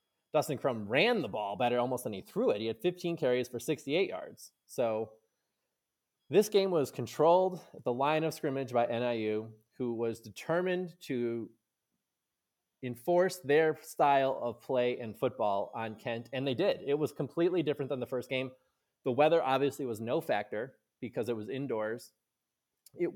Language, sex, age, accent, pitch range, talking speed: English, male, 20-39, American, 115-155 Hz, 170 wpm